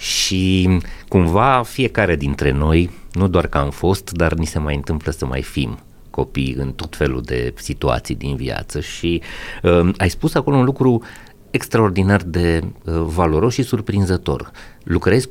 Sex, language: male, Romanian